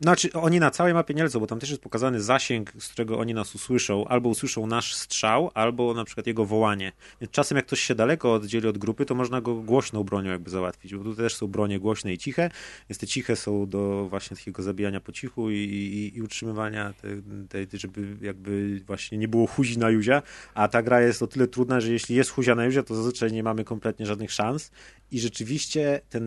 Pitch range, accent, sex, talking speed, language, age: 110-130 Hz, native, male, 220 wpm, Polish, 30-49